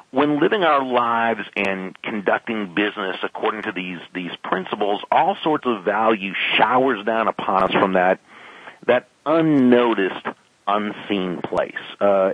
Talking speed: 130 wpm